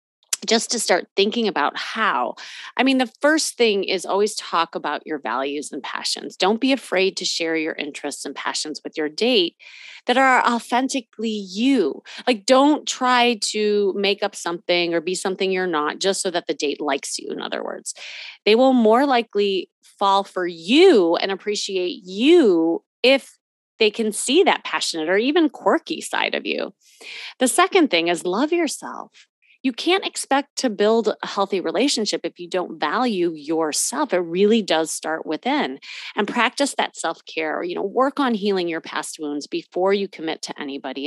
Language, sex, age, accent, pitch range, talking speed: English, female, 30-49, American, 175-245 Hz, 175 wpm